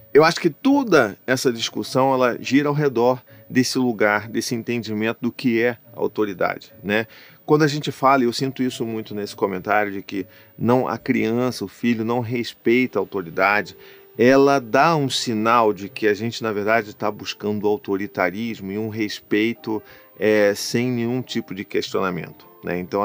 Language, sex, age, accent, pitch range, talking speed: Portuguese, male, 40-59, Brazilian, 110-135 Hz, 170 wpm